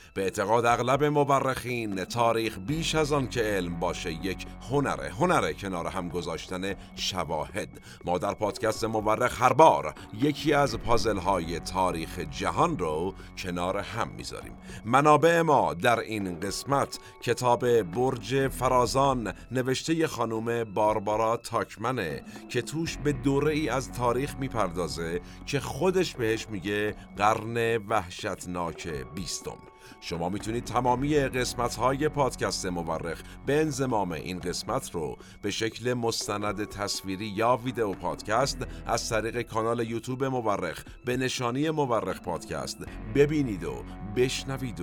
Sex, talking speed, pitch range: male, 125 wpm, 95-130 Hz